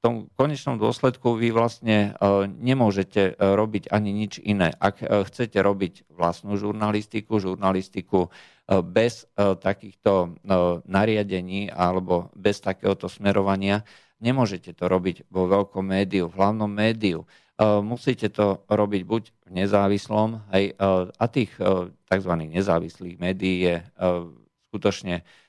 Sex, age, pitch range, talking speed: male, 50-69, 95-105 Hz, 110 wpm